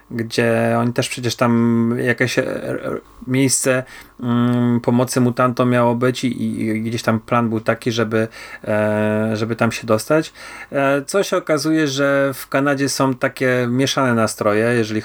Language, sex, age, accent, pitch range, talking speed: Polish, male, 30-49, native, 110-135 Hz, 130 wpm